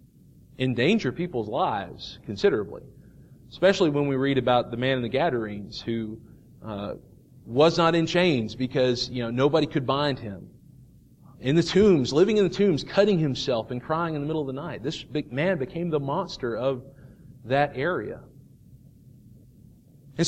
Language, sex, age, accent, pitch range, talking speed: English, male, 40-59, American, 130-190 Hz, 160 wpm